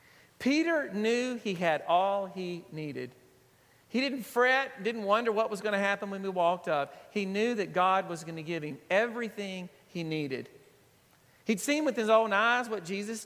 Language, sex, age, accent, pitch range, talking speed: English, male, 40-59, American, 160-220 Hz, 185 wpm